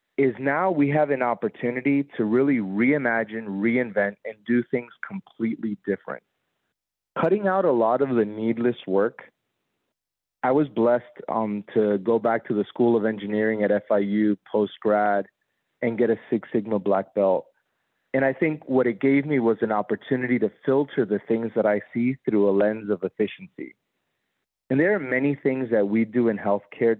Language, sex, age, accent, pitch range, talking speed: English, male, 30-49, American, 105-135 Hz, 170 wpm